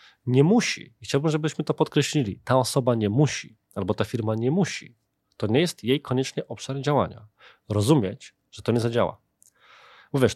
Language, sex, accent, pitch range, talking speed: Polish, male, native, 110-140 Hz, 160 wpm